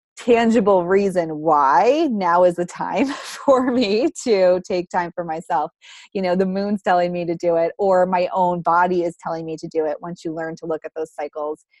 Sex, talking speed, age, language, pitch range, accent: female, 210 wpm, 20-39, English, 170-205 Hz, American